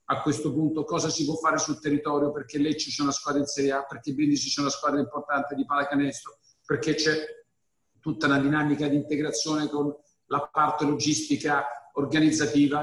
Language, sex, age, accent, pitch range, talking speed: Italian, male, 50-69, native, 140-165 Hz, 180 wpm